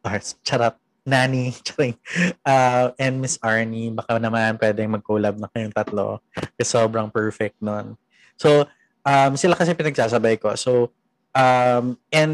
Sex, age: male, 20-39